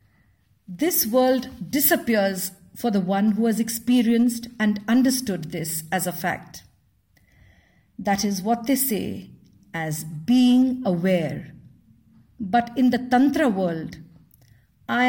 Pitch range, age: 175-240 Hz, 50-69